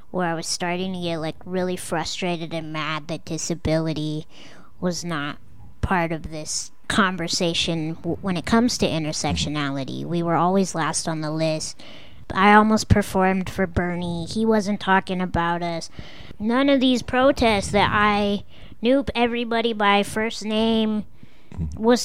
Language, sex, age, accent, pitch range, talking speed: English, male, 30-49, American, 165-225 Hz, 145 wpm